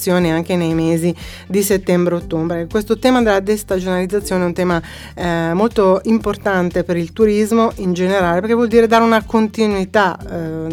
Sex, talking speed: female, 155 wpm